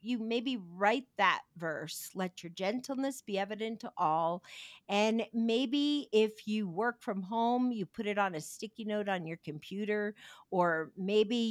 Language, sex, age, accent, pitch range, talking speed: English, female, 50-69, American, 180-230 Hz, 160 wpm